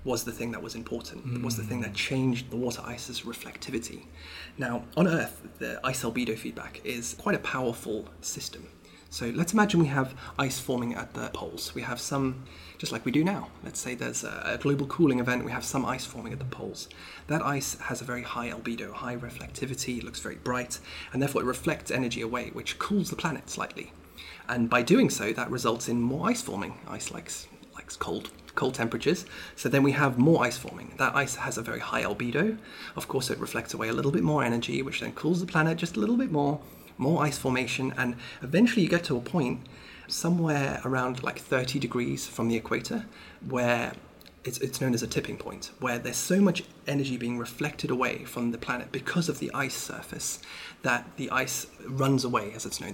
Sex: male